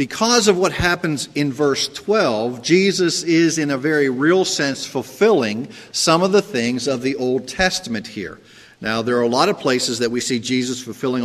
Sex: male